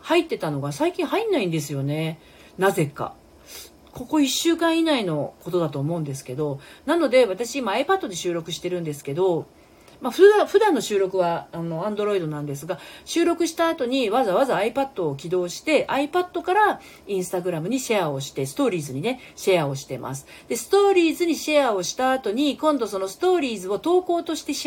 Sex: female